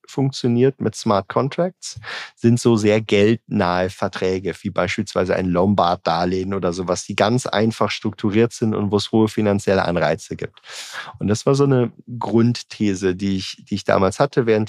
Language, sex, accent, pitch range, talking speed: German, male, German, 90-110 Hz, 170 wpm